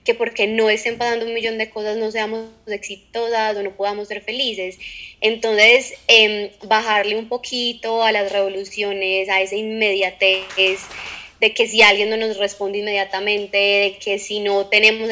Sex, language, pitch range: female, Spanish, 195-225 Hz